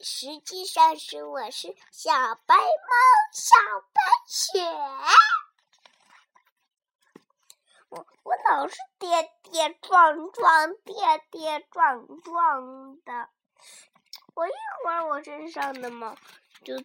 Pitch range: 295-430 Hz